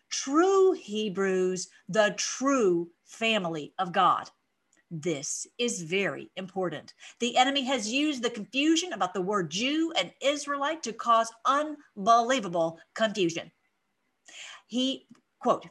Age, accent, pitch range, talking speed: 50-69, American, 195-275 Hz, 110 wpm